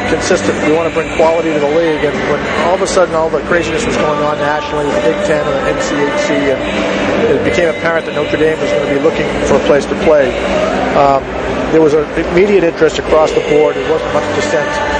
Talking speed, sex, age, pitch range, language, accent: 230 wpm, male, 50-69, 145-165 Hz, English, American